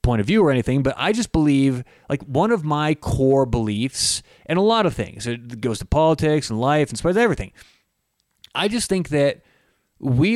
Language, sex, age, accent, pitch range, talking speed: English, male, 30-49, American, 115-150 Hz, 195 wpm